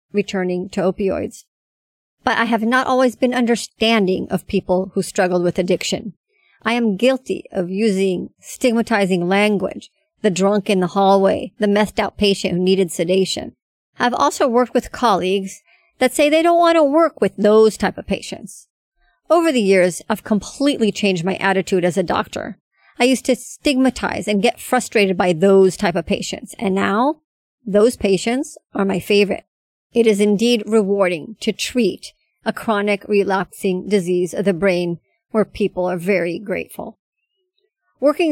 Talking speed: 160 wpm